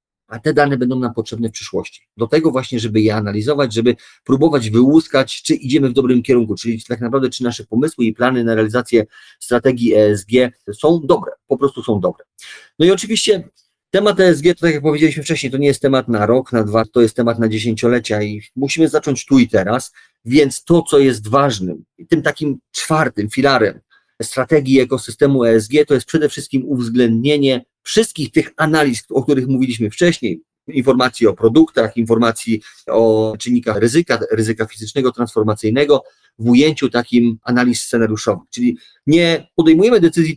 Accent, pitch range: native, 115-160 Hz